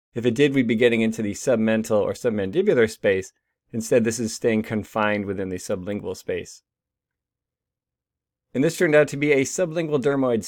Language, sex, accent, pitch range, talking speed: English, male, American, 115-150 Hz, 170 wpm